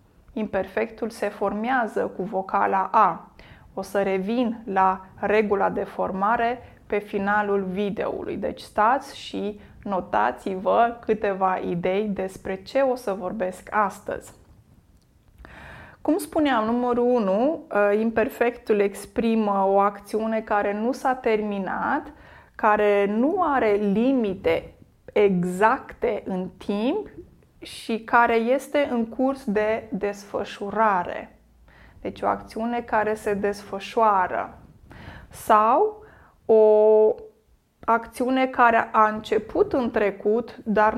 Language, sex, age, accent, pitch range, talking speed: Romanian, female, 20-39, native, 200-235 Hz, 100 wpm